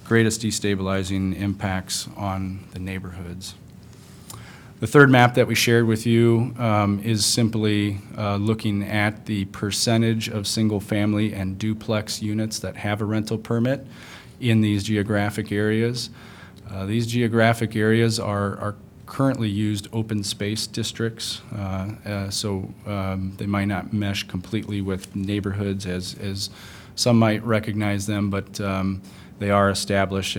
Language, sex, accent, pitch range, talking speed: English, male, American, 95-110 Hz, 135 wpm